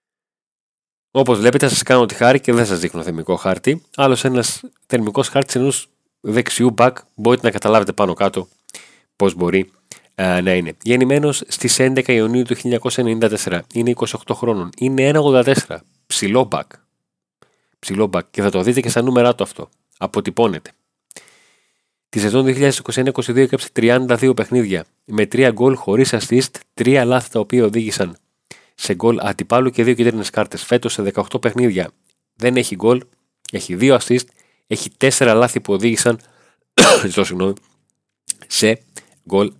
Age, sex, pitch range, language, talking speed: 30-49, male, 100-125 Hz, Greek, 140 wpm